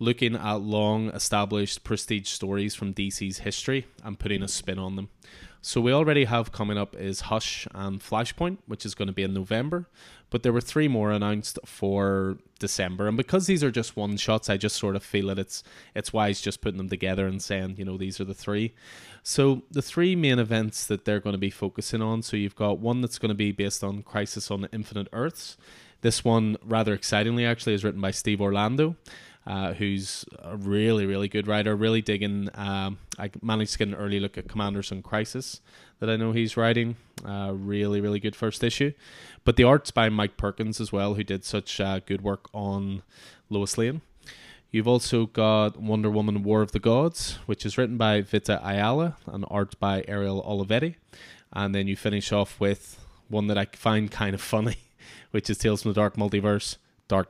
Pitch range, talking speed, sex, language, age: 100-115 Hz, 200 wpm, male, English, 20-39